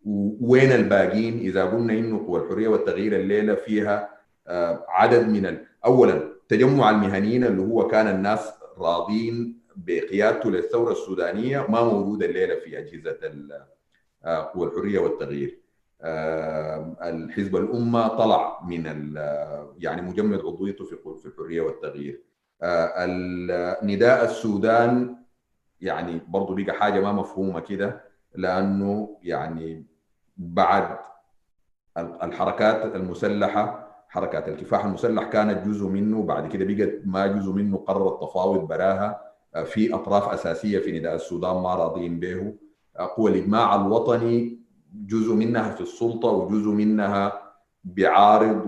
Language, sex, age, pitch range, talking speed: Arabic, male, 40-59, 95-115 Hz, 110 wpm